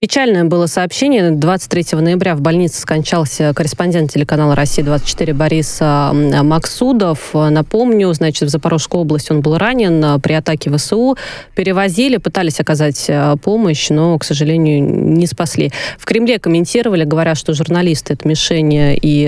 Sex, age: female, 20-39